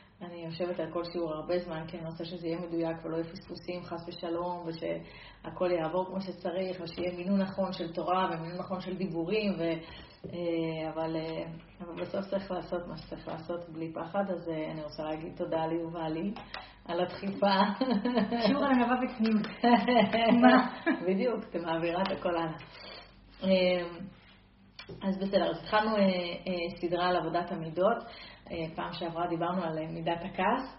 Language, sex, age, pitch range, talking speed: Hebrew, female, 30-49, 170-205 Hz, 135 wpm